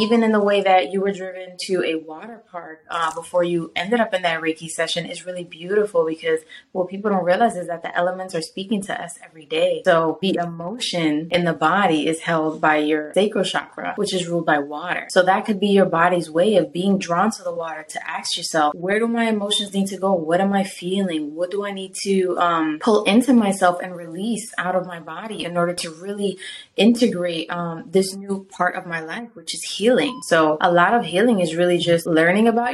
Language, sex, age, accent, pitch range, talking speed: English, female, 20-39, American, 170-205 Hz, 225 wpm